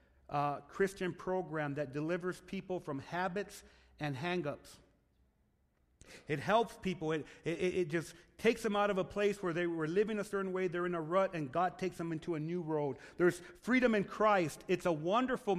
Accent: American